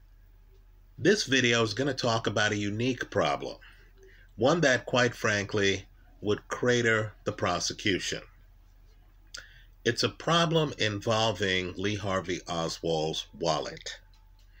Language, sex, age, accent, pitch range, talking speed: English, male, 50-69, American, 95-125 Hz, 105 wpm